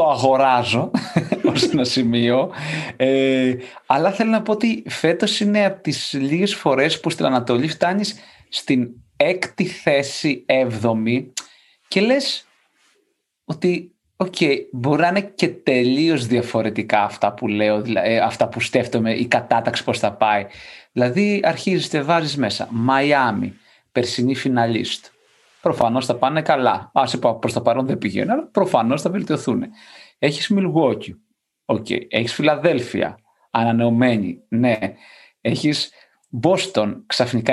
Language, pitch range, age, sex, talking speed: Greek, 125-175 Hz, 30-49, male, 125 wpm